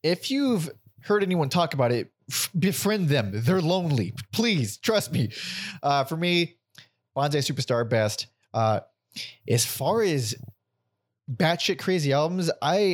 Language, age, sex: English, 20-39, male